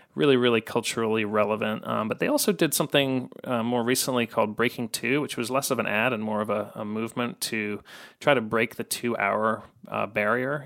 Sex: male